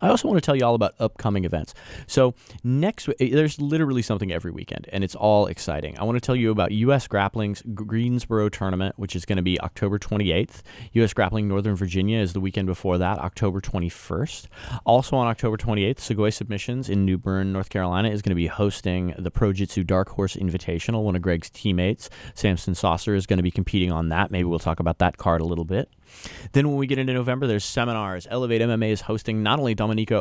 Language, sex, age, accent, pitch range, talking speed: English, male, 30-49, American, 90-110 Hz, 215 wpm